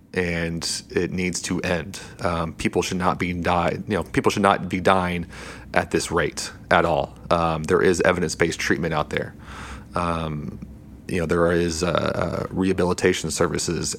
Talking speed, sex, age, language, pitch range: 165 wpm, male, 30-49, English, 85-95 Hz